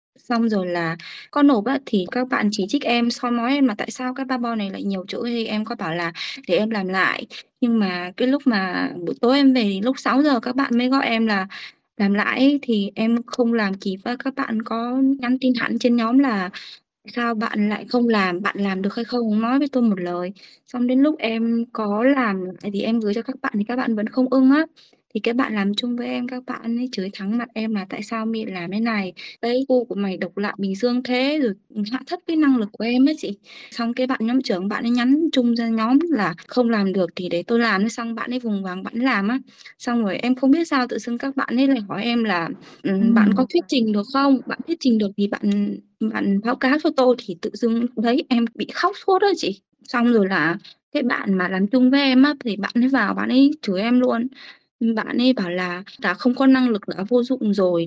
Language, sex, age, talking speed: Vietnamese, female, 20-39, 255 wpm